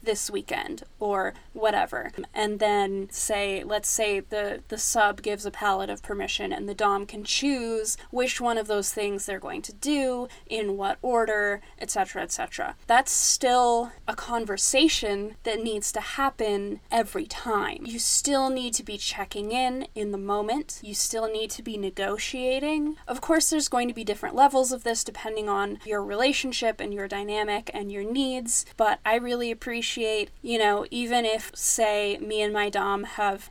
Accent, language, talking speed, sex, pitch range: American, English, 170 wpm, female, 205-245 Hz